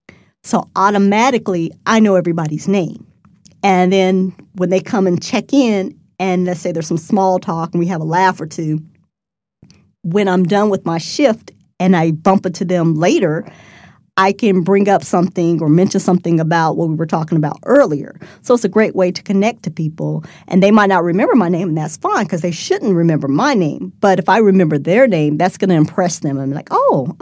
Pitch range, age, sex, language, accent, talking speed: 170-210 Hz, 40-59, female, English, American, 205 wpm